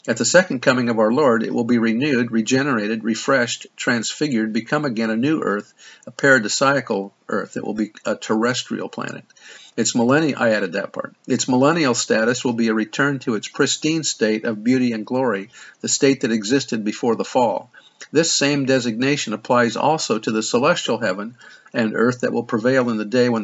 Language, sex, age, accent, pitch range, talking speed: English, male, 50-69, American, 115-135 Hz, 185 wpm